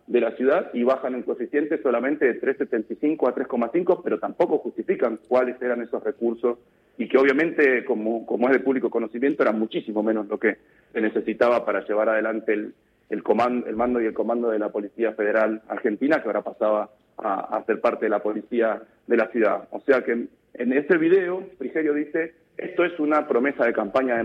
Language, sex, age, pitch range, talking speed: Spanish, male, 40-59, 115-155 Hz, 200 wpm